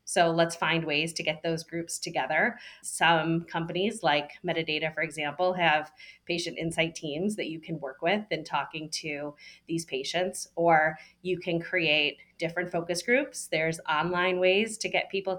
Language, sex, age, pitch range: English, female, 30-49, 155-190 Hz